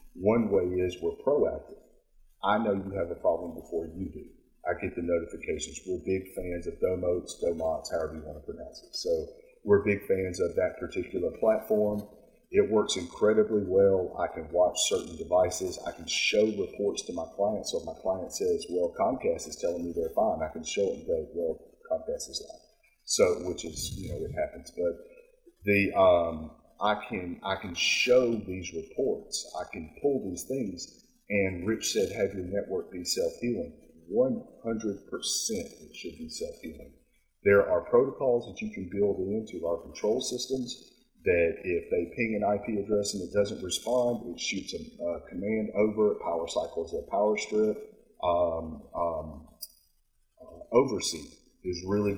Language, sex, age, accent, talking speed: English, male, 40-59, American, 175 wpm